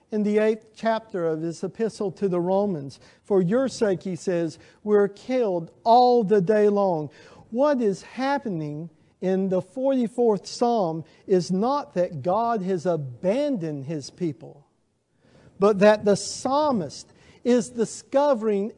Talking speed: 135 wpm